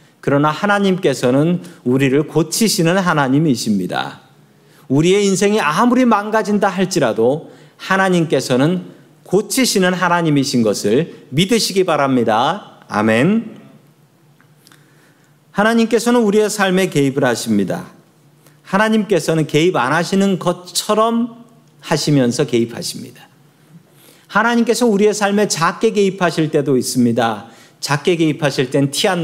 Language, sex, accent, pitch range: Korean, male, native, 145-200 Hz